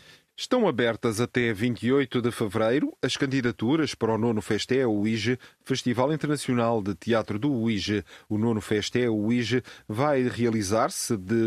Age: 40-59